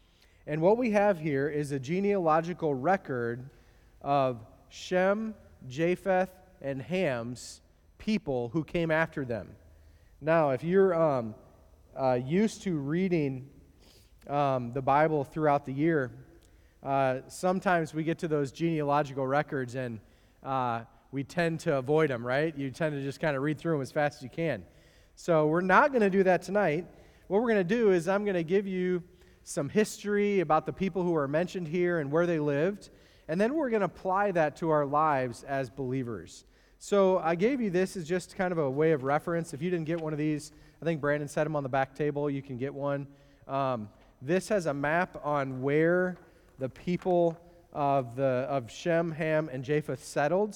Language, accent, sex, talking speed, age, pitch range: English, American, male, 185 wpm, 30-49, 135-175 Hz